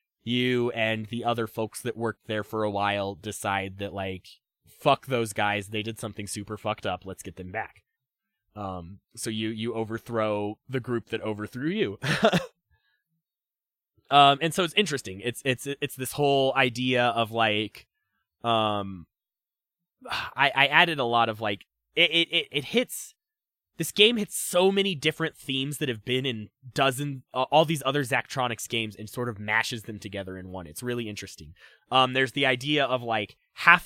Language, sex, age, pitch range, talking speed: English, male, 20-39, 110-155 Hz, 175 wpm